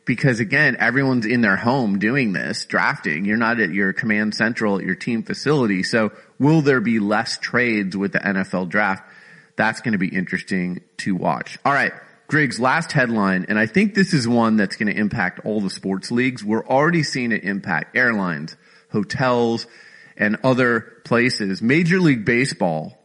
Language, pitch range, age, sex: English, 105-145 Hz, 30-49, male